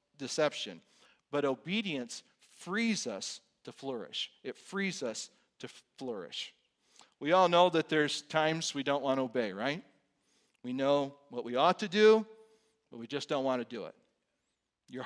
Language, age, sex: English, 40-59, male